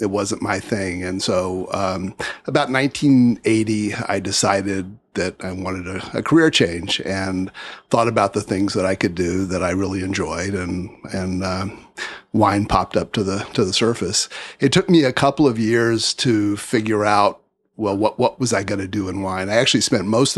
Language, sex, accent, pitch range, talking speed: English, male, American, 95-115 Hz, 195 wpm